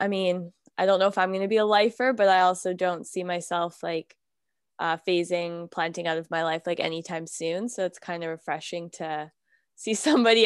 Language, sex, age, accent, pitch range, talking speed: English, female, 10-29, American, 165-195 Hz, 210 wpm